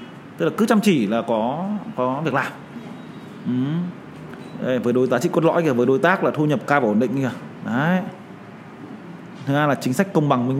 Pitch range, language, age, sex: 135-195 Hz, Vietnamese, 20-39, male